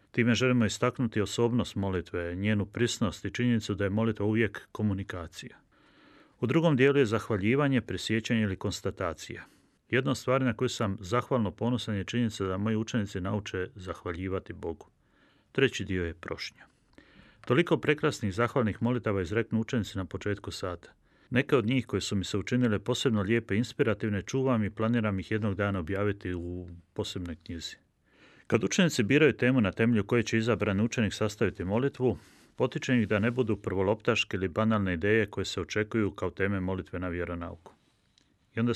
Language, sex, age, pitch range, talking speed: Croatian, male, 40-59, 95-120 Hz, 160 wpm